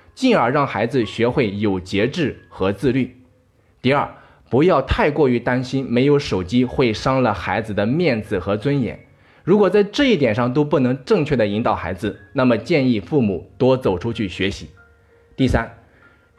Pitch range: 105-140 Hz